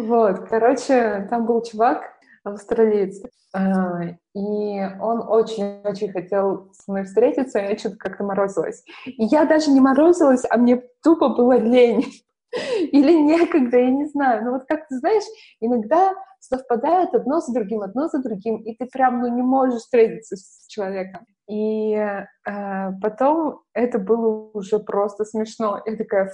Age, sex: 20-39, female